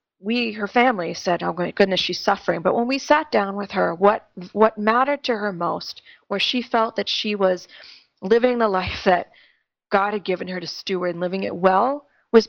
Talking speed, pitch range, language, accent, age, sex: 205 wpm, 180-215 Hz, English, American, 30-49, female